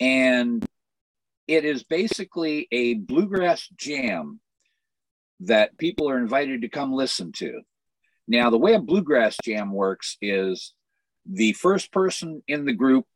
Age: 50-69